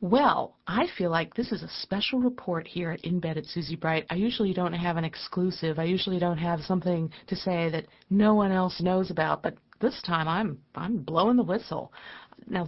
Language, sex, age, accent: English, female, 50-69, American